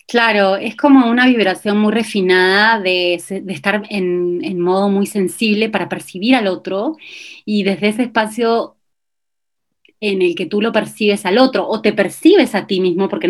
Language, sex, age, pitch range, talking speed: Spanish, female, 30-49, 175-210 Hz, 170 wpm